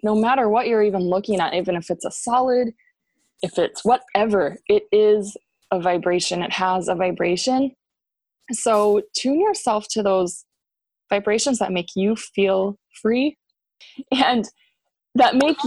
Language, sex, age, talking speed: English, female, 20-39, 140 wpm